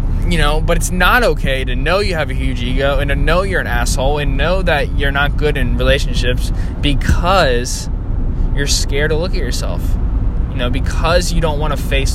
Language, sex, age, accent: English, male, 20-39, American